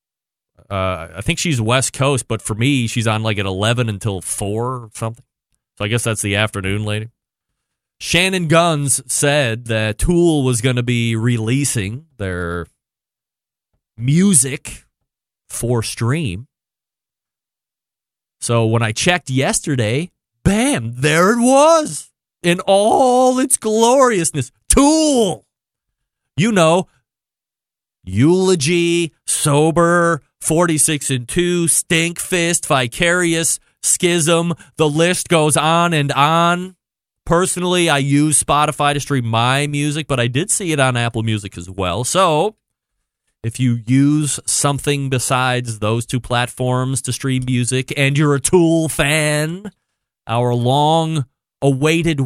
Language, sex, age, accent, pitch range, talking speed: English, male, 30-49, American, 120-170 Hz, 125 wpm